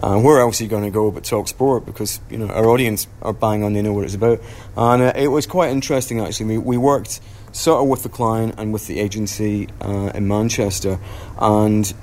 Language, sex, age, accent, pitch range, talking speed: English, male, 30-49, British, 100-110 Hz, 235 wpm